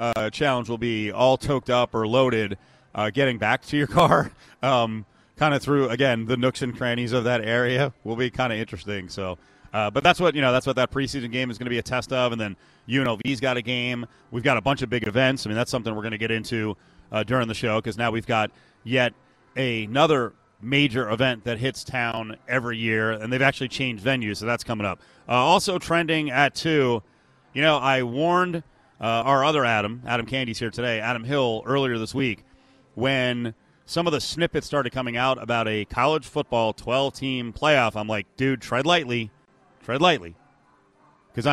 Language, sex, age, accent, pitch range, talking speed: English, male, 30-49, American, 115-135 Hz, 205 wpm